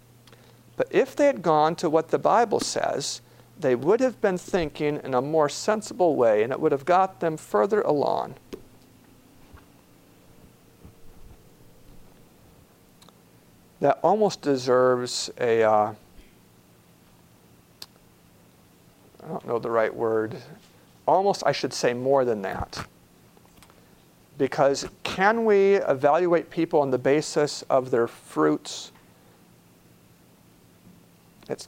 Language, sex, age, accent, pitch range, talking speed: English, male, 50-69, American, 125-175 Hz, 110 wpm